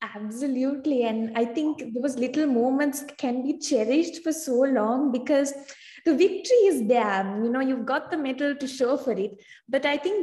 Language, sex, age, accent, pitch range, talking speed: English, female, 20-39, Indian, 230-295 Hz, 180 wpm